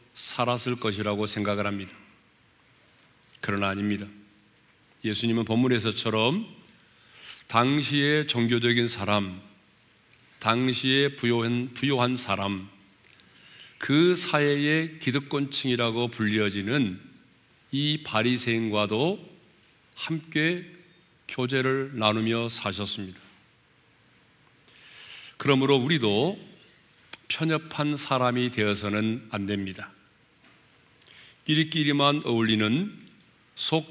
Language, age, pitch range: Korean, 40-59, 105-140 Hz